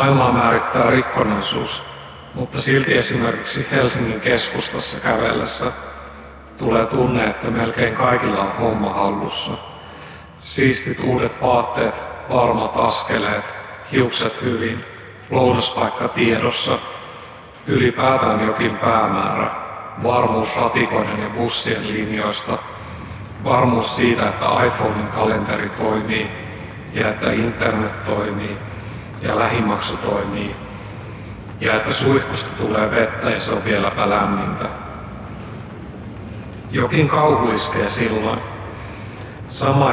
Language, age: Finnish, 60-79